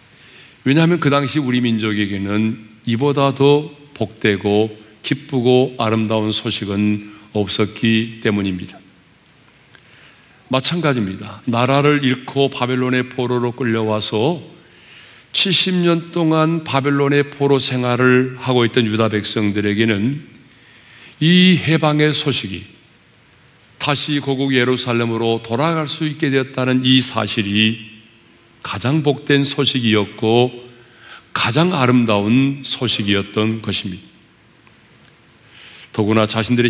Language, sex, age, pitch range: Korean, male, 40-59, 110-140 Hz